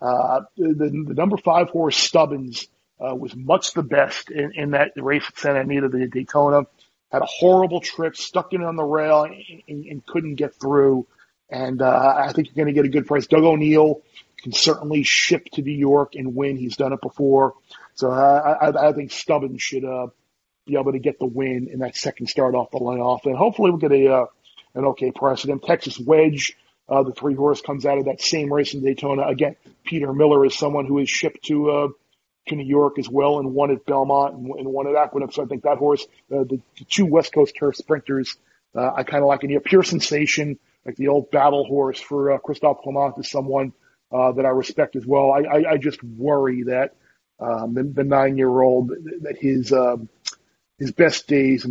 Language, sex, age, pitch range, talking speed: English, male, 40-59, 130-150 Hz, 220 wpm